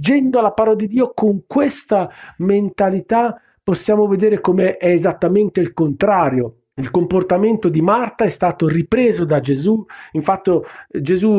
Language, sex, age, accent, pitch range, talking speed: Italian, male, 40-59, native, 170-240 Hz, 135 wpm